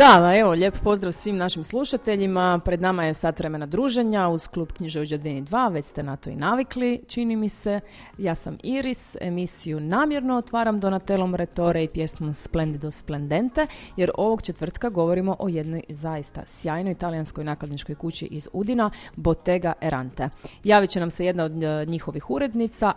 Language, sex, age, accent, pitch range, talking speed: Croatian, female, 30-49, native, 155-200 Hz, 160 wpm